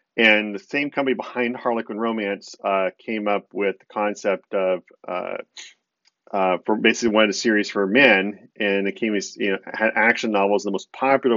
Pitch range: 100-115 Hz